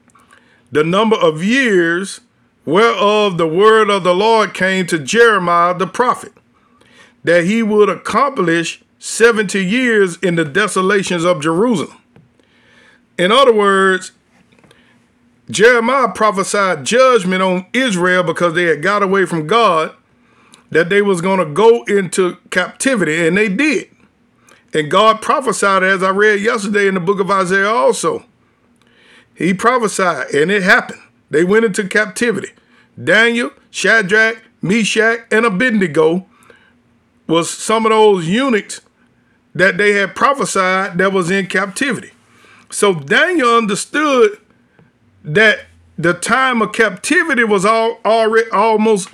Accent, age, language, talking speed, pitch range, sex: American, 50-69, English, 125 wpm, 190-225 Hz, male